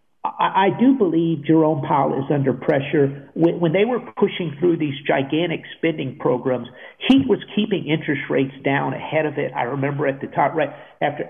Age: 50-69